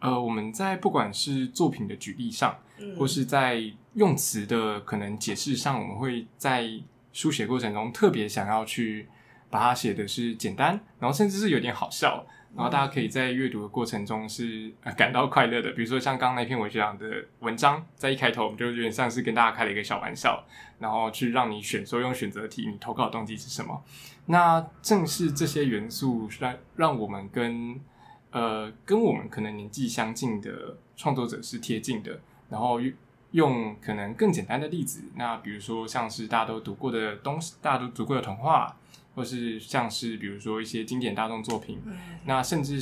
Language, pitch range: Chinese, 110-135 Hz